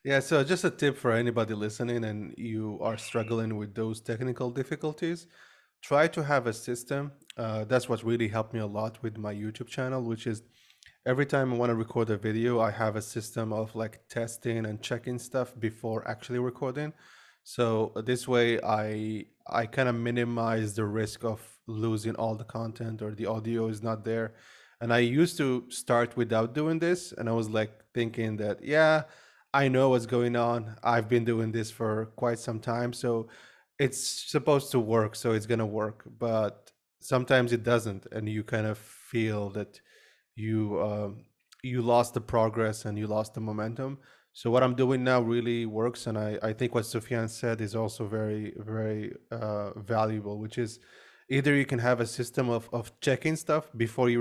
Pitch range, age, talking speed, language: 110-125 Hz, 20-39, 190 wpm, English